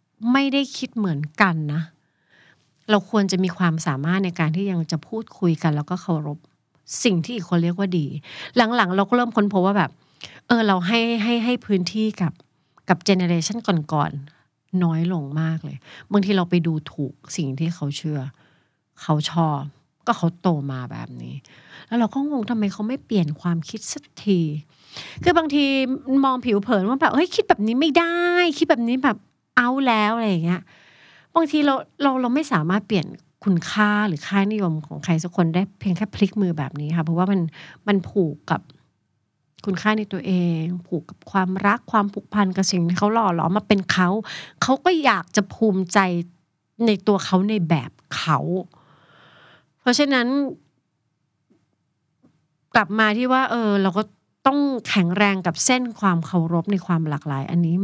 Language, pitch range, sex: Thai, 160-220 Hz, female